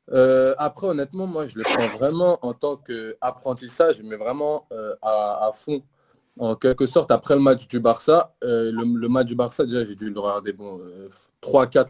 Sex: male